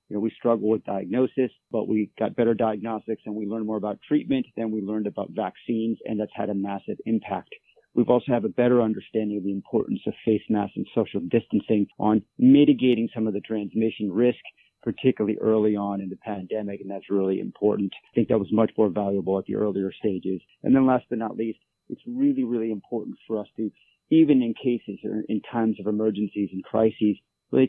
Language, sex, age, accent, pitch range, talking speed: English, male, 40-59, American, 105-120 Hz, 205 wpm